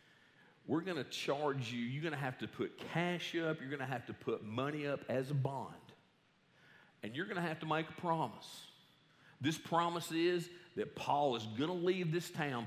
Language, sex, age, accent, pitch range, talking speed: English, male, 50-69, American, 120-170 Hz, 210 wpm